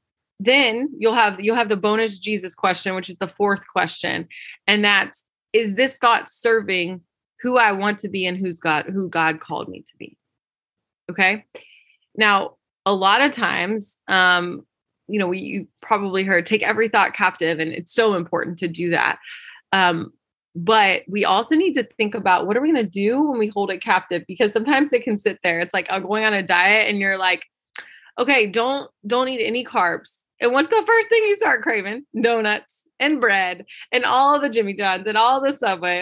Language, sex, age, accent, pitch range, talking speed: English, female, 20-39, American, 185-235 Hz, 200 wpm